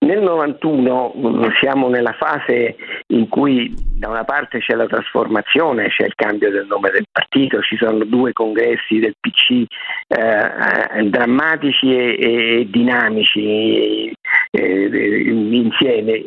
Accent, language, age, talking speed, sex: native, Italian, 50-69, 125 wpm, male